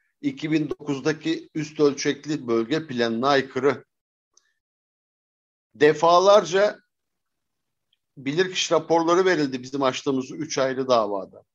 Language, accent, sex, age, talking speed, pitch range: Turkish, native, male, 60-79, 80 wpm, 135-180 Hz